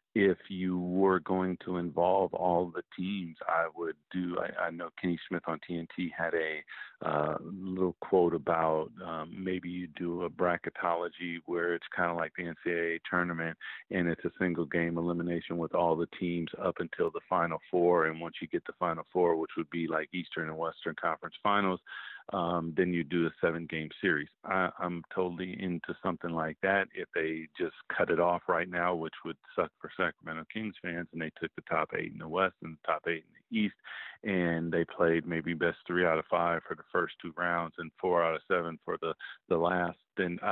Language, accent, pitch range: English, American, 85-90 Hz